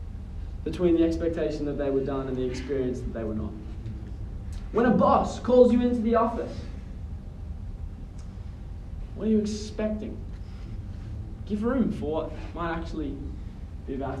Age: 20-39